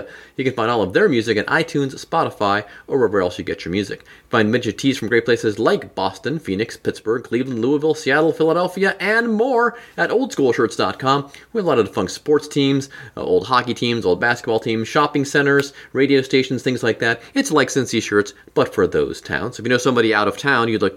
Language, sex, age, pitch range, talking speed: English, male, 30-49, 110-160 Hz, 210 wpm